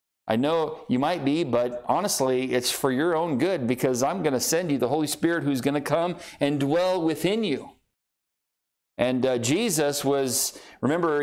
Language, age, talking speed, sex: English, 40-59, 180 wpm, male